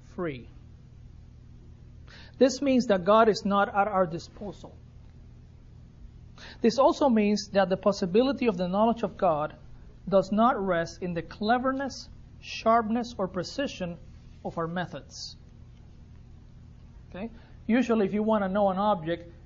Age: 40-59